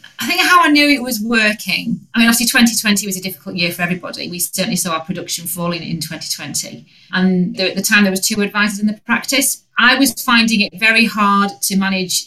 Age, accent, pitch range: 30-49, British, 190-220 Hz